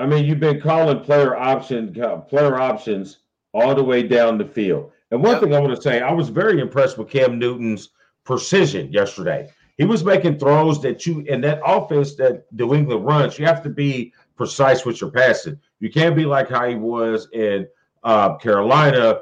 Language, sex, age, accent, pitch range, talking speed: English, male, 40-59, American, 120-150 Hz, 185 wpm